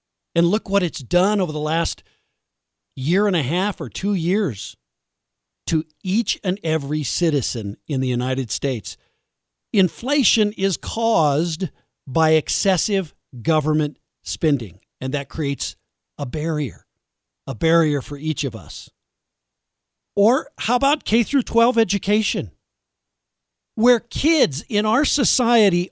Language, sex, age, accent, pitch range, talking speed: English, male, 50-69, American, 130-200 Hz, 125 wpm